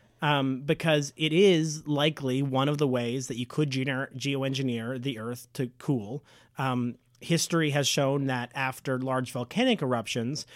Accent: American